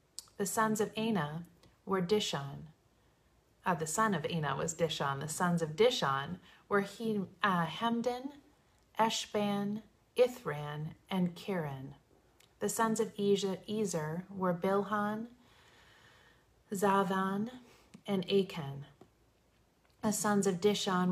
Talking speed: 100 wpm